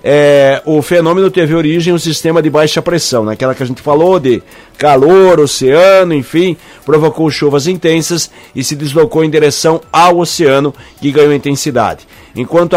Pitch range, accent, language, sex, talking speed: 140-165 Hz, Brazilian, Portuguese, male, 165 wpm